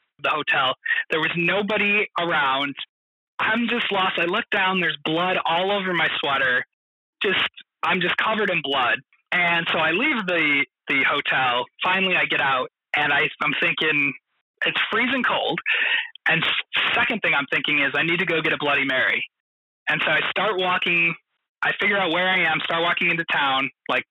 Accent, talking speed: American, 180 wpm